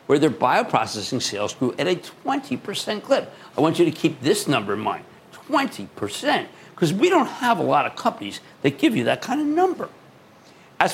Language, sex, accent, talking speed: English, male, American, 190 wpm